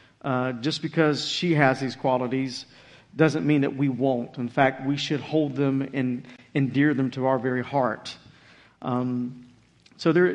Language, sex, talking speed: English, male, 160 wpm